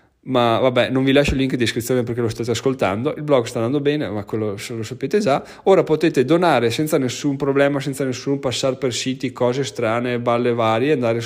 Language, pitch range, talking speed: Italian, 115-140 Hz, 215 wpm